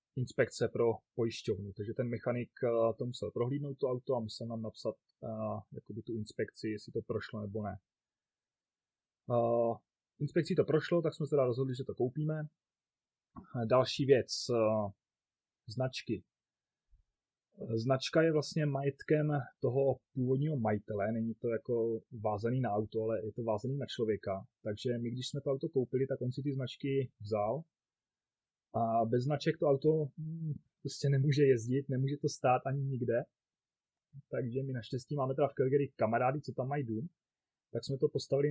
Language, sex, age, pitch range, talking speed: Czech, male, 30-49, 115-140 Hz, 155 wpm